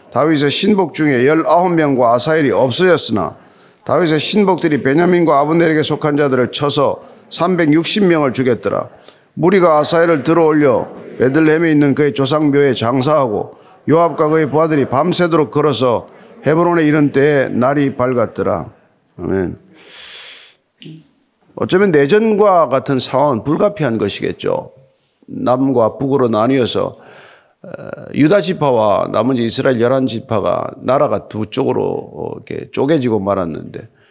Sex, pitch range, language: male, 135-170 Hz, Korean